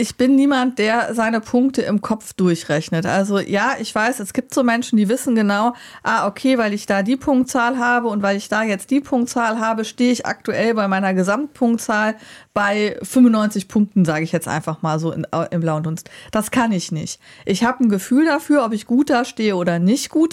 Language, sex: German, female